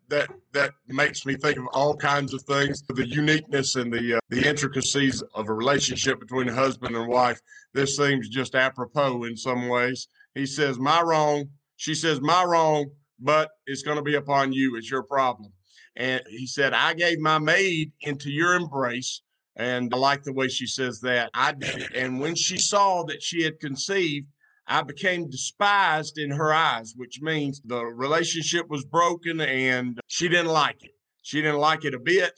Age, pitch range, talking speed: 50-69, 130-155 Hz, 190 wpm